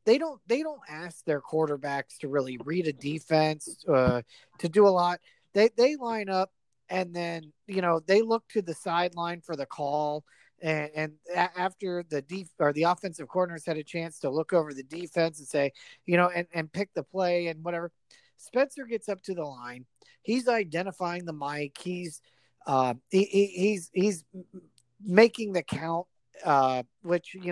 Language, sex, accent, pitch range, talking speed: English, male, American, 150-195 Hz, 180 wpm